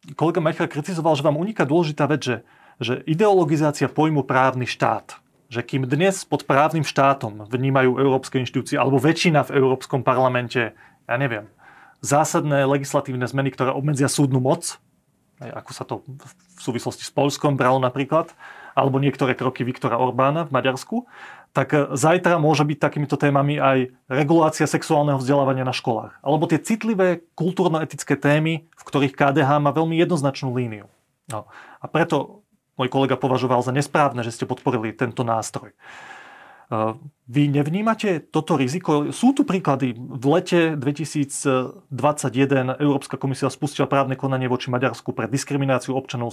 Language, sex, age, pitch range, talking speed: Slovak, male, 30-49, 130-155 Hz, 140 wpm